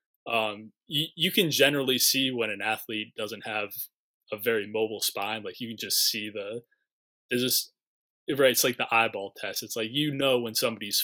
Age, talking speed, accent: 20-39, 190 wpm, American